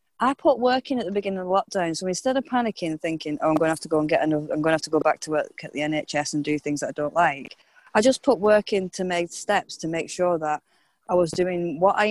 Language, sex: English, female